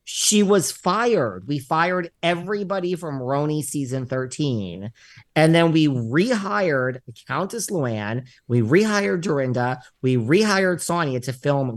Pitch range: 130-170 Hz